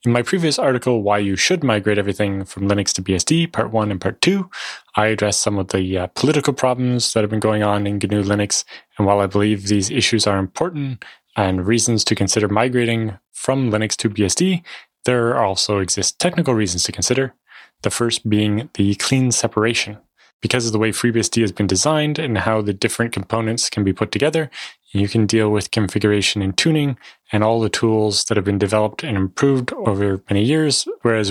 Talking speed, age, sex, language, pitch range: 195 wpm, 20-39, male, English, 100-120 Hz